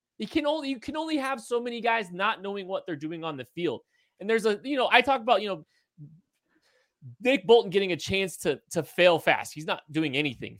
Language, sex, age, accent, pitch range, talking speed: English, male, 30-49, American, 125-175 Hz, 230 wpm